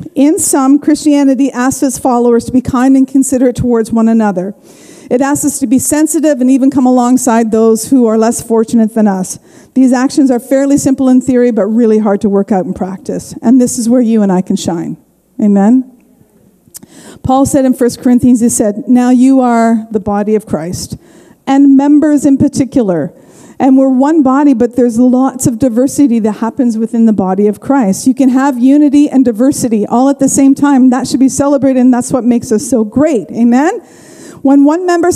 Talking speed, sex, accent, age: 200 wpm, female, American, 50-69